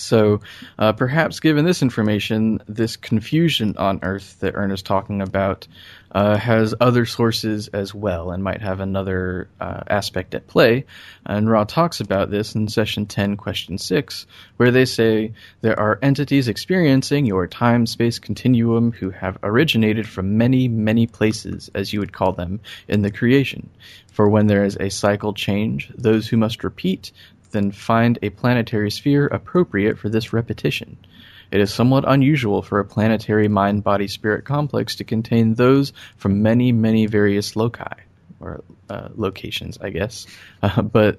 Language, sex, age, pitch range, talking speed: English, male, 20-39, 100-115 Hz, 155 wpm